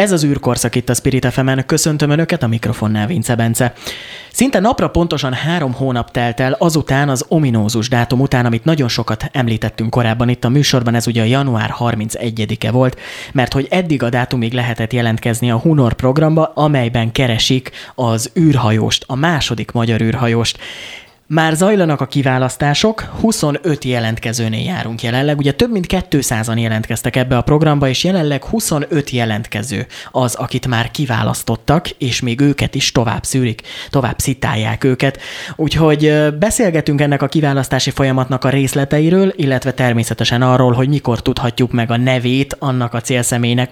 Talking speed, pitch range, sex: 150 wpm, 120-145 Hz, male